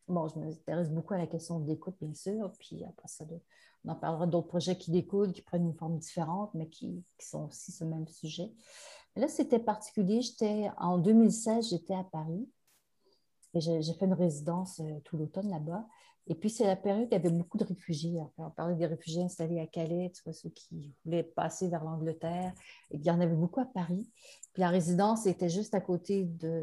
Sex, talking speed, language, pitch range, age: female, 210 wpm, French, 165-200 Hz, 50-69